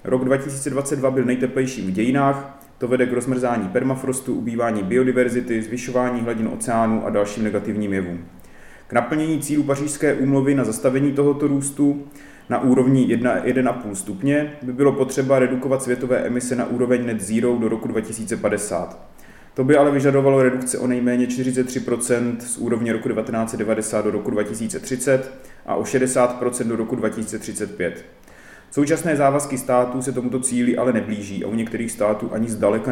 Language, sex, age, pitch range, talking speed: Czech, male, 30-49, 115-135 Hz, 150 wpm